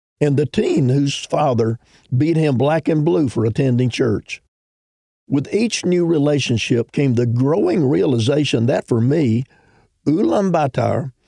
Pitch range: 120-150 Hz